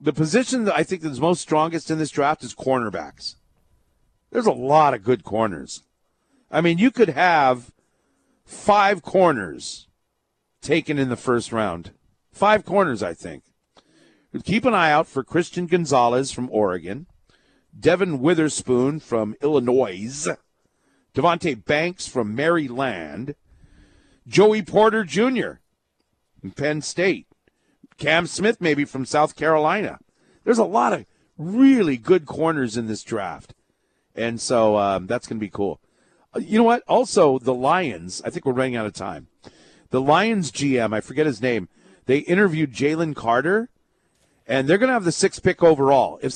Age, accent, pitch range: 50-69, American, 125-185 Hz